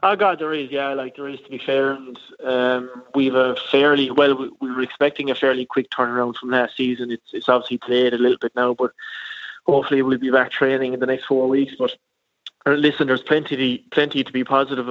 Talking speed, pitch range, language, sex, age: 225 wpm, 125-140 Hz, English, male, 20-39